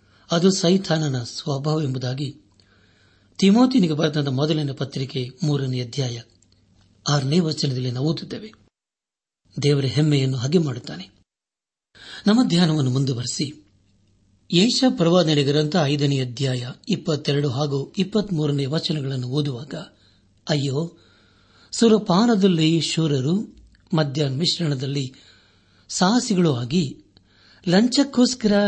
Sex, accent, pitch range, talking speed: male, native, 120-175 Hz, 80 wpm